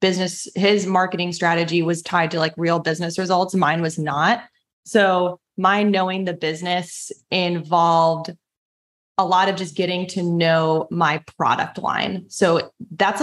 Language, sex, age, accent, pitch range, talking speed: English, female, 20-39, American, 165-190 Hz, 145 wpm